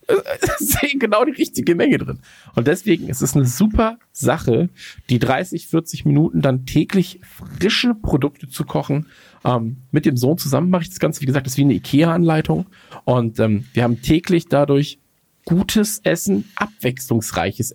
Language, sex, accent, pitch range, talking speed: German, male, German, 120-165 Hz, 165 wpm